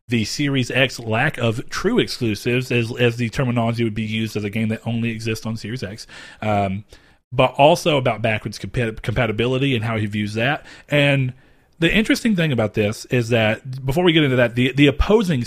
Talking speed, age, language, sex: 195 wpm, 40-59, English, male